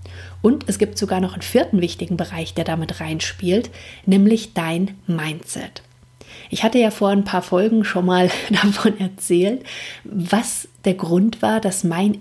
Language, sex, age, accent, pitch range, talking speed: German, female, 30-49, German, 180-215 Hz, 155 wpm